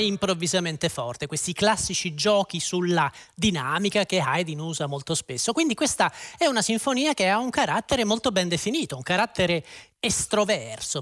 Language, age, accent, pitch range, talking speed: Italian, 40-59, native, 160-225 Hz, 145 wpm